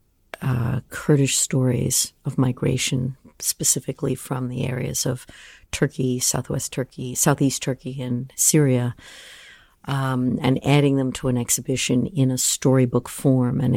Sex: female